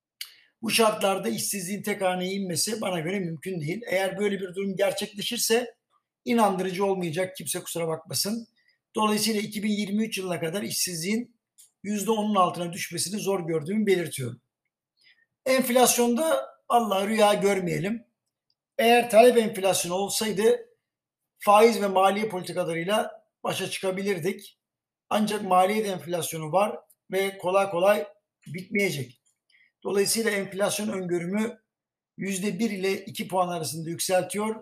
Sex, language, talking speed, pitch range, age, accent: male, Turkish, 105 wpm, 180-215 Hz, 60-79, native